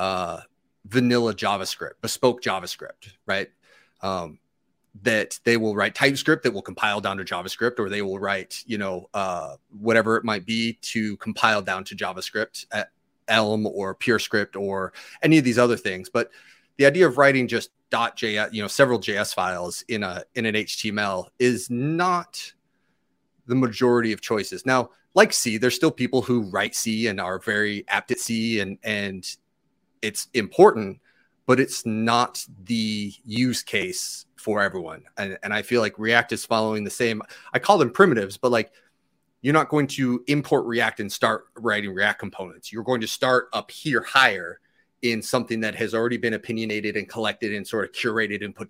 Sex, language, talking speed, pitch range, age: male, English, 175 wpm, 105-125 Hz, 30-49